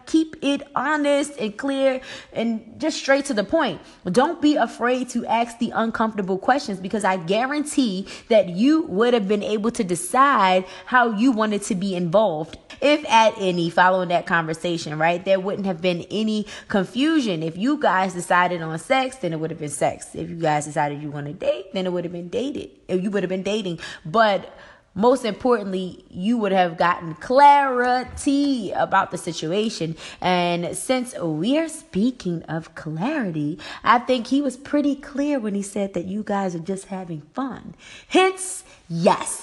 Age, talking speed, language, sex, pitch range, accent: 20-39, 175 wpm, English, female, 175-255 Hz, American